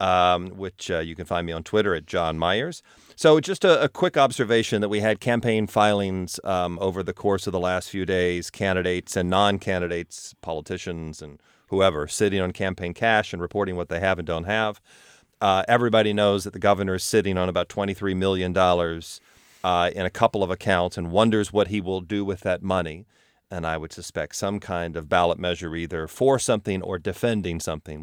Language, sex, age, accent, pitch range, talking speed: English, male, 40-59, American, 90-105 Hz, 195 wpm